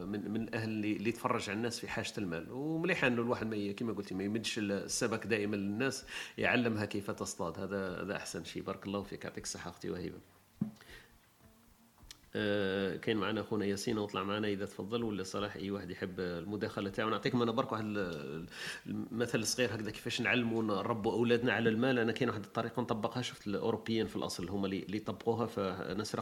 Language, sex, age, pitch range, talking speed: Arabic, male, 40-59, 100-125 Hz, 180 wpm